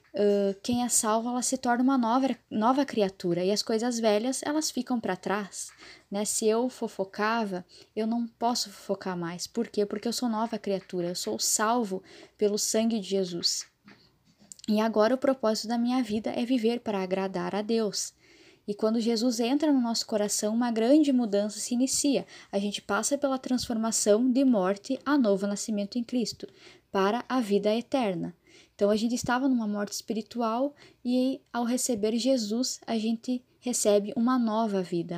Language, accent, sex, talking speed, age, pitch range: Portuguese, Brazilian, female, 170 wpm, 10-29, 205-250 Hz